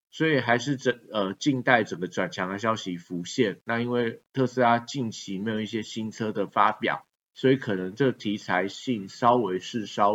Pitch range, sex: 95-120 Hz, male